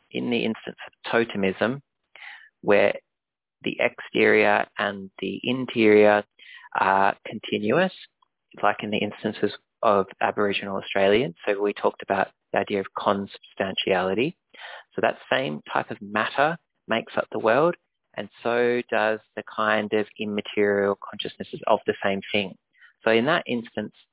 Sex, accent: male, Australian